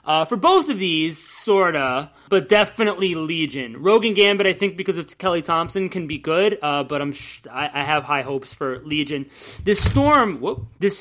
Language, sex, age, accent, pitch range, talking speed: English, male, 30-49, American, 150-215 Hz, 190 wpm